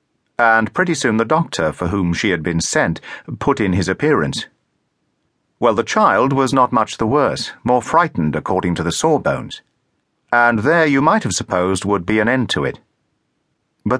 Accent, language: British, English